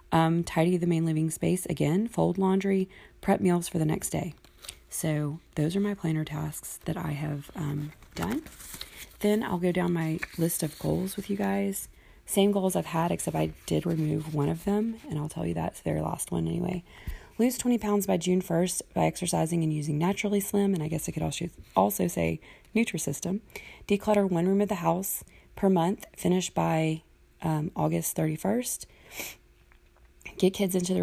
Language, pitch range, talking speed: English, 145-185 Hz, 180 wpm